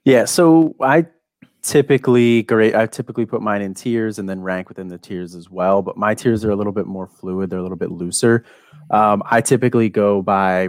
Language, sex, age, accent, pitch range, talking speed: English, male, 30-49, American, 95-115 Hz, 215 wpm